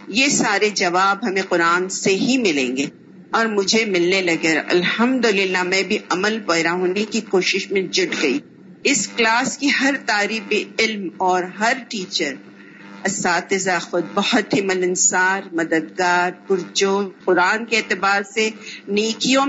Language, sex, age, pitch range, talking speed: Urdu, female, 50-69, 185-230 Hz, 135 wpm